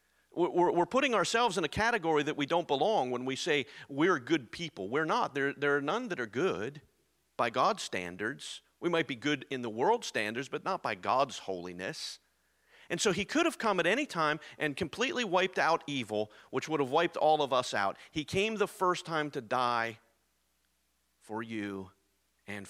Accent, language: American, English